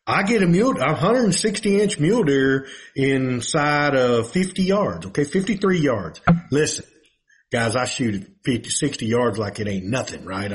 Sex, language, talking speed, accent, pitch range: male, English, 175 wpm, American, 130-195 Hz